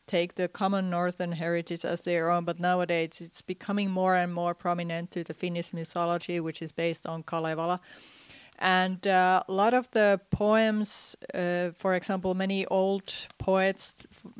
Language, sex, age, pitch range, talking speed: Swedish, female, 30-49, 165-190 Hz, 160 wpm